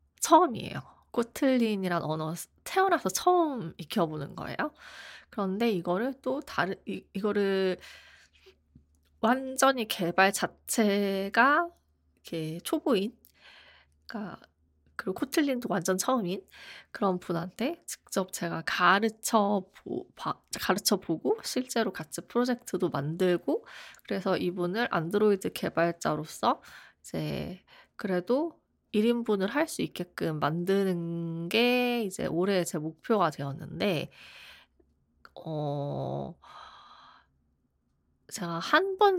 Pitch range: 170-250 Hz